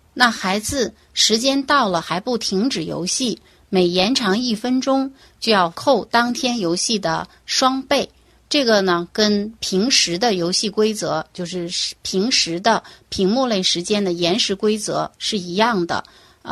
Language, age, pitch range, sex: Chinese, 30-49, 180-255 Hz, female